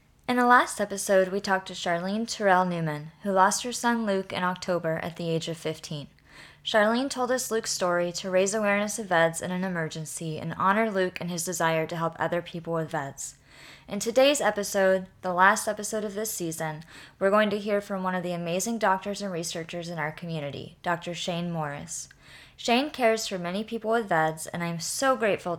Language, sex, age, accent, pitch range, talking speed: English, female, 20-39, American, 170-215 Hz, 200 wpm